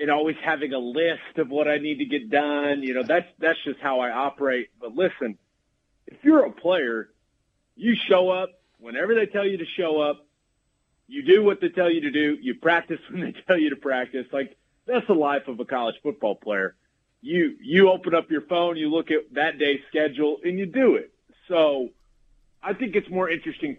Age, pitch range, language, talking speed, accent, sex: 30-49, 145-205 Hz, English, 210 wpm, American, male